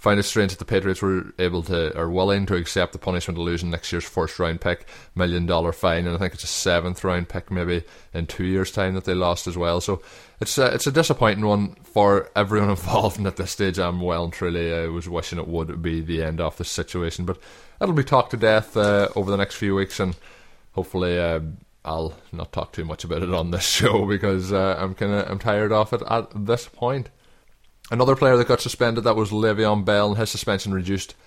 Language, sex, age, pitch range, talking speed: English, male, 20-39, 90-105 Hz, 235 wpm